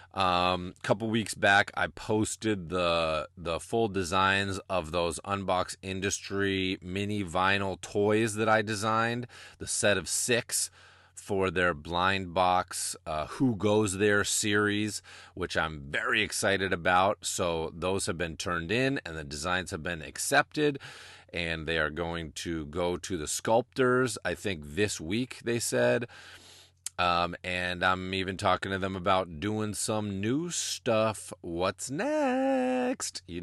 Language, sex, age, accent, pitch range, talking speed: English, male, 30-49, American, 85-100 Hz, 145 wpm